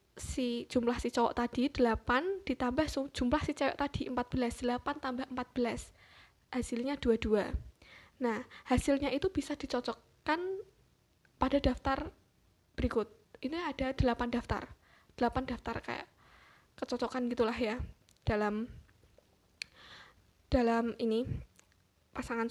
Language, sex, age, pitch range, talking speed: Indonesian, female, 10-29, 240-280 Hz, 105 wpm